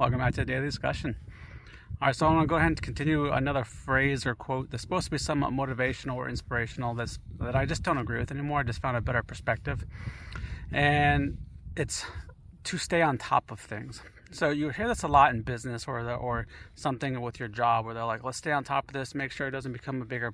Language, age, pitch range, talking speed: English, 30-49, 115-140 Hz, 240 wpm